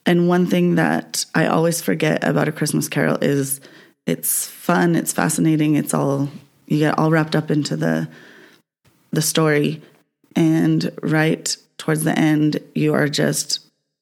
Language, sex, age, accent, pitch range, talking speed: English, female, 20-39, American, 135-155 Hz, 150 wpm